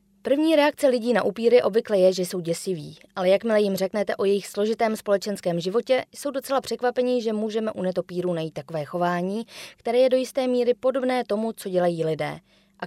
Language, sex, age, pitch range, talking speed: Czech, female, 20-39, 185-245 Hz, 185 wpm